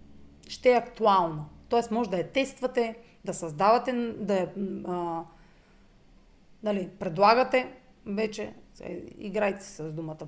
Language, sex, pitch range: Bulgarian, female, 175-255 Hz